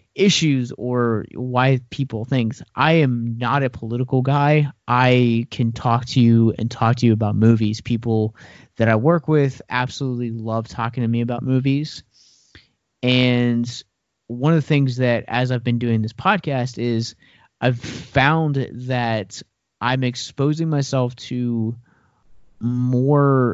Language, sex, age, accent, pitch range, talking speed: English, male, 30-49, American, 115-130 Hz, 140 wpm